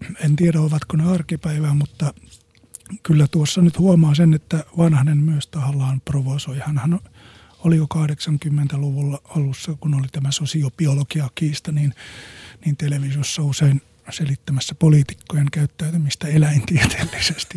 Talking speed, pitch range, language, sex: 115 wpm, 140-155 Hz, Finnish, male